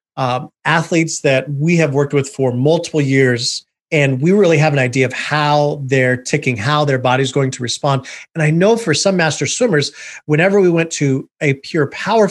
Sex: male